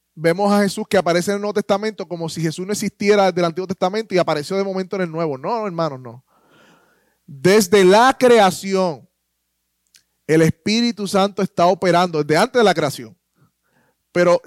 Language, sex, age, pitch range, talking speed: Spanish, male, 20-39, 160-205 Hz, 175 wpm